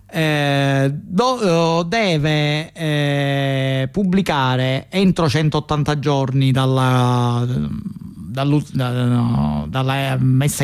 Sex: male